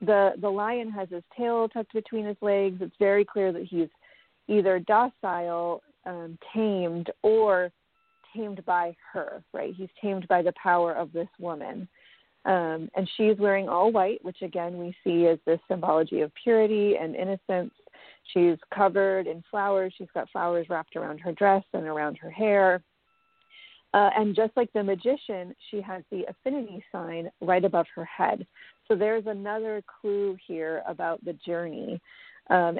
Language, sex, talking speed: English, female, 160 wpm